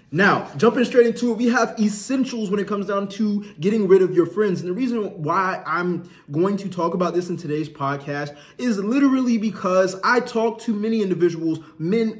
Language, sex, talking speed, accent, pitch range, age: English, male, 195 wpm, American, 155-210 Hz, 20-39